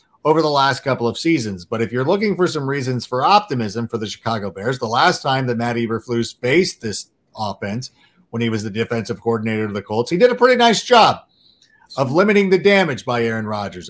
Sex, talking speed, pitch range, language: male, 215 wpm, 120-170 Hz, English